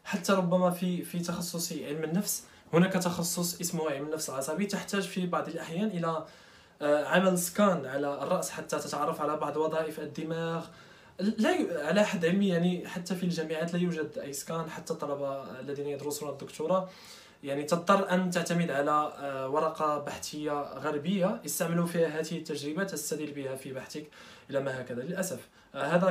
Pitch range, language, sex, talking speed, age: 150-185 Hz, Arabic, male, 155 wpm, 20-39